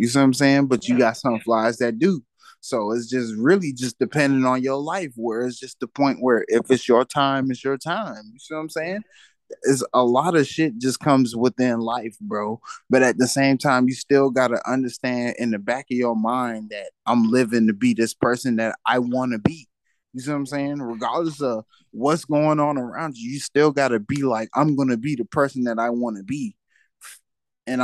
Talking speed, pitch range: 230 wpm, 120-150 Hz